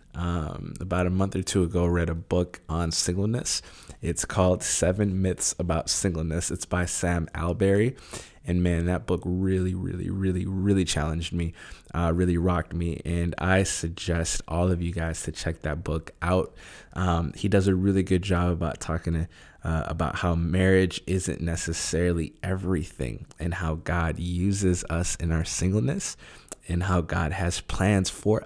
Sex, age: male, 20-39